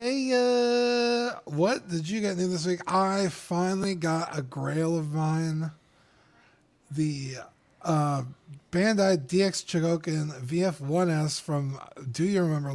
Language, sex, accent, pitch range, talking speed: English, male, American, 140-185 Hz, 120 wpm